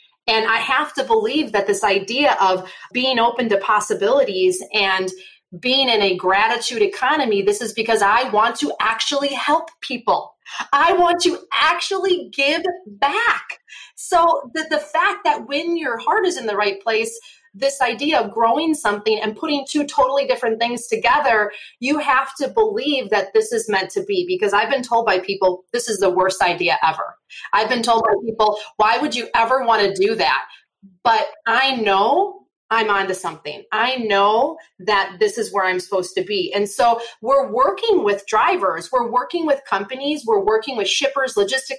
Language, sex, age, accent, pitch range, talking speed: English, female, 30-49, American, 215-325 Hz, 180 wpm